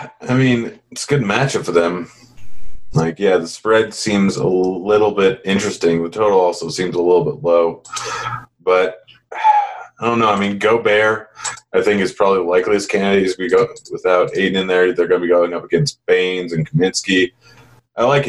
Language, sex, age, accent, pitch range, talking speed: English, male, 30-49, American, 90-125 Hz, 185 wpm